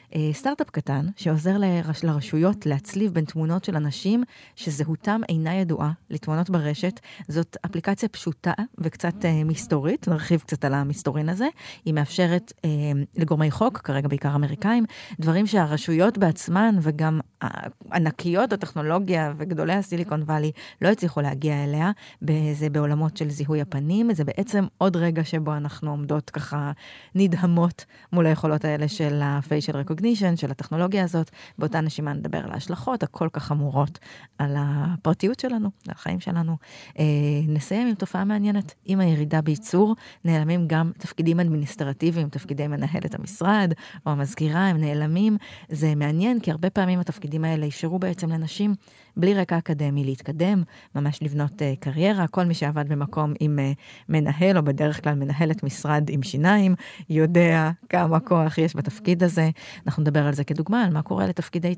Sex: female